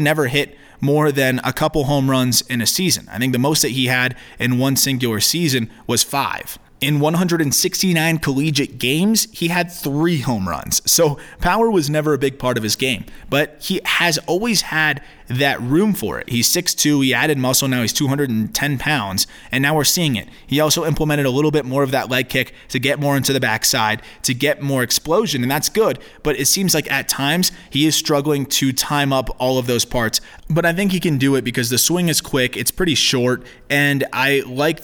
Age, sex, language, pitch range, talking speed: 20-39, male, English, 125-155 Hz, 215 wpm